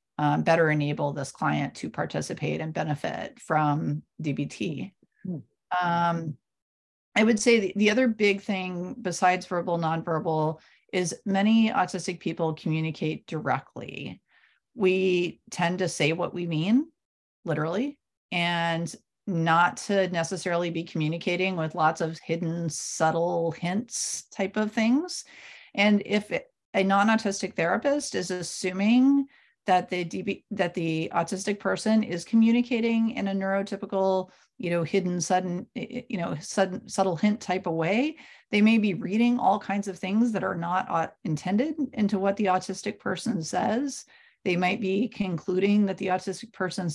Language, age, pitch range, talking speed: English, 40-59, 170-210 Hz, 140 wpm